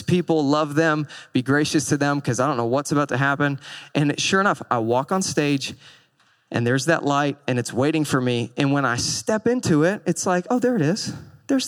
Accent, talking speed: American, 225 wpm